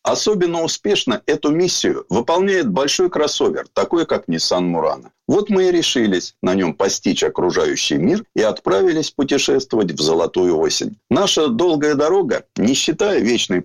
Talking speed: 140 wpm